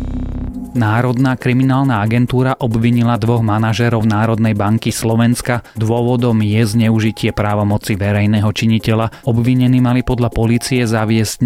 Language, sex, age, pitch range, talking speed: Slovak, male, 30-49, 105-120 Hz, 105 wpm